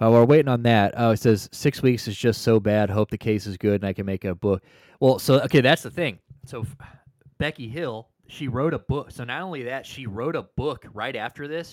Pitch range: 110-140 Hz